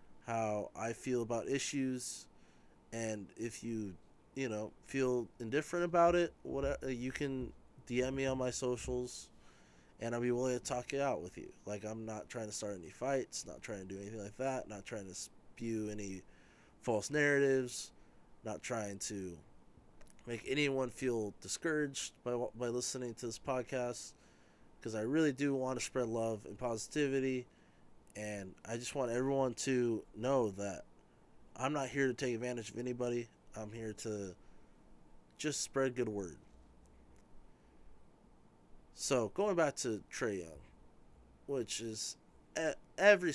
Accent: American